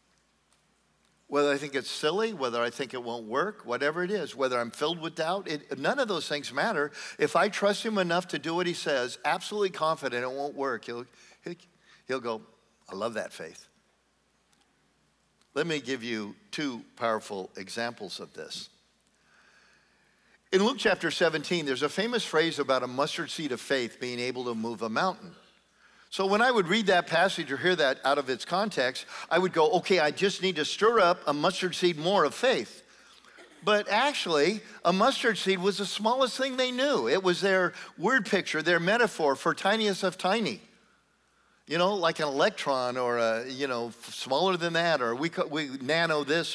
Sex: male